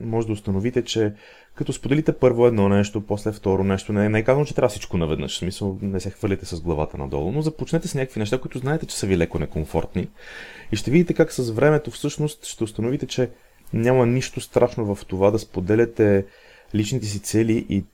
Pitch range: 95-125 Hz